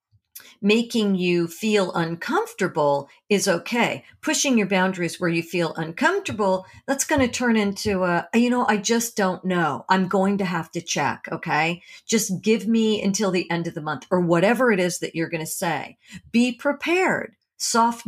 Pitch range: 170-240 Hz